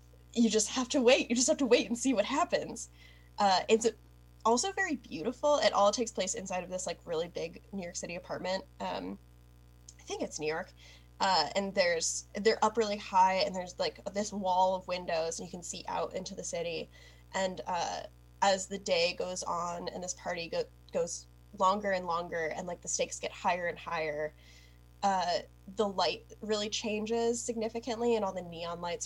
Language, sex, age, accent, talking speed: English, female, 10-29, American, 195 wpm